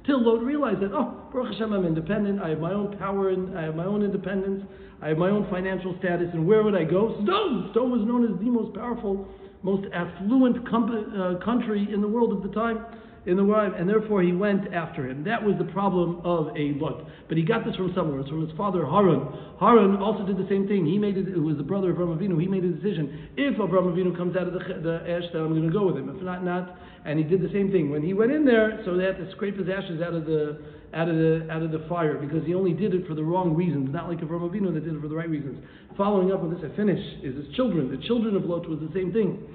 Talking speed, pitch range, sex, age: 270 wpm, 170-205 Hz, male, 60-79